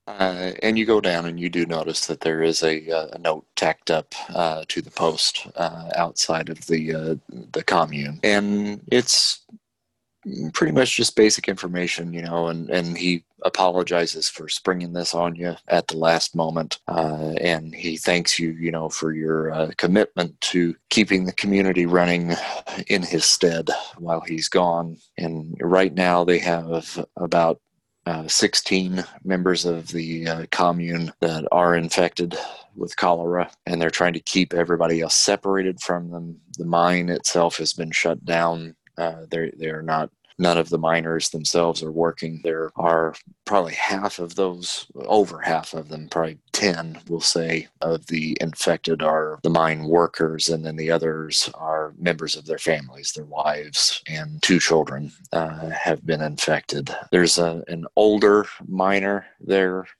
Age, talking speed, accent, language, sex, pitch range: 40-59, 165 wpm, American, English, male, 80-90 Hz